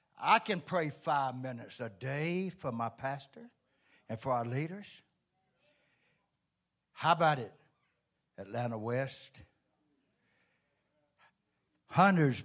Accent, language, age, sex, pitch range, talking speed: American, English, 60-79, male, 140-205 Hz, 95 wpm